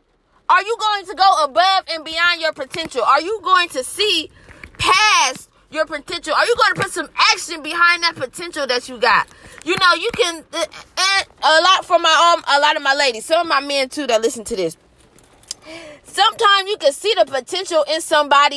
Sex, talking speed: female, 205 wpm